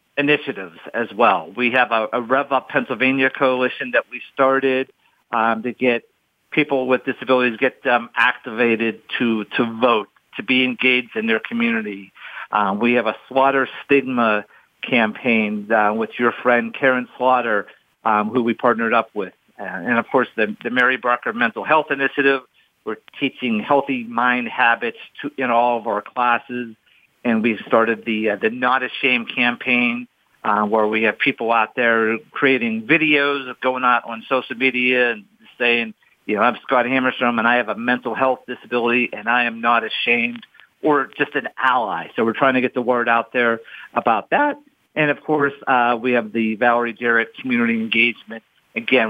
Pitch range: 115-130 Hz